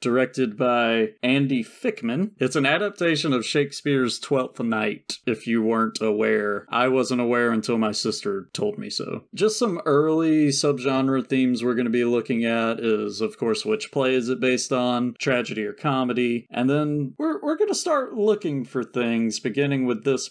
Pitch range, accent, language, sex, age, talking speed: 115-150 Hz, American, English, male, 30-49, 175 wpm